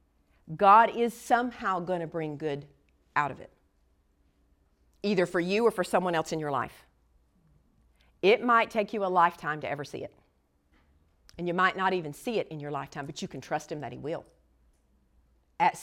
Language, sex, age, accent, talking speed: English, female, 40-59, American, 180 wpm